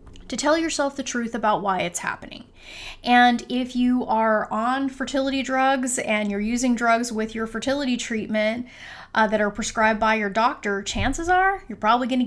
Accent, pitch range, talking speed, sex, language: American, 200-250 Hz, 175 wpm, female, English